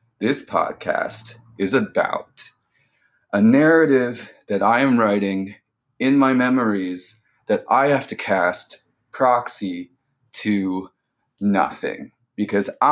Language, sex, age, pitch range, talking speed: English, male, 30-49, 100-130 Hz, 100 wpm